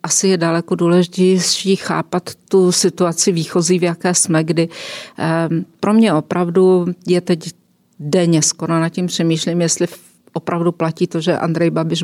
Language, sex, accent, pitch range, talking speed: Czech, female, native, 160-175 Hz, 145 wpm